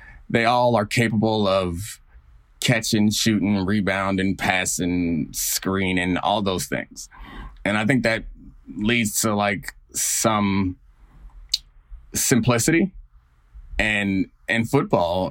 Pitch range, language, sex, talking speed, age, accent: 70-105 Hz, English, male, 100 wpm, 30-49, American